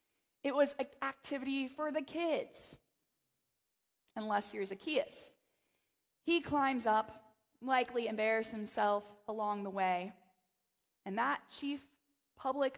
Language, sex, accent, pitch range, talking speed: English, female, American, 210-290 Hz, 110 wpm